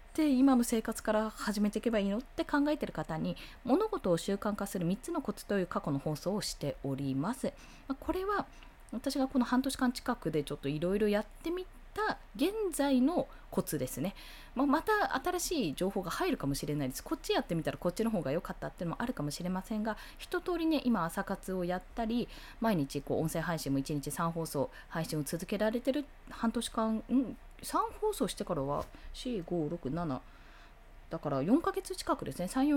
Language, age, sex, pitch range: Japanese, 20-39, female, 170-265 Hz